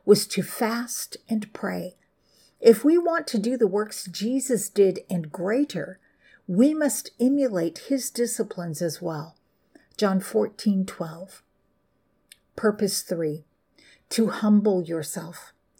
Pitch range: 180-235 Hz